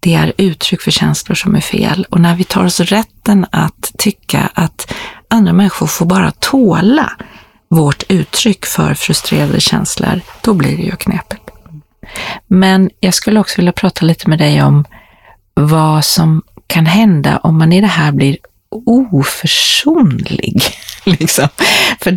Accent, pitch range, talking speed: native, 160-195 Hz, 150 wpm